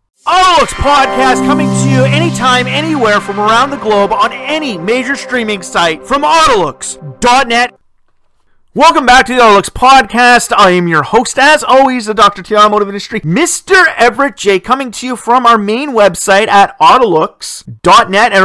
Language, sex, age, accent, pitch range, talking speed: English, male, 40-59, American, 180-255 Hz, 155 wpm